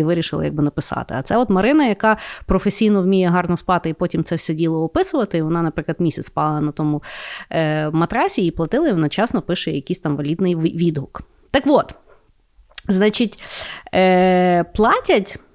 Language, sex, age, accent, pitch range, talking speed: Ukrainian, female, 30-49, native, 155-220 Hz, 160 wpm